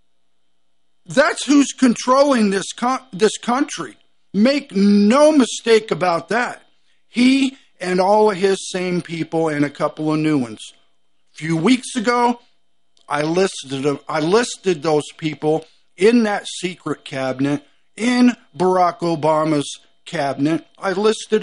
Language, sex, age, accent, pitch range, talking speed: English, male, 50-69, American, 155-240 Hz, 130 wpm